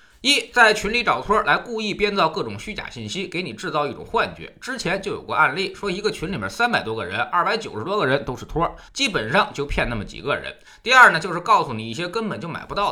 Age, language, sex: 20-39, Chinese, male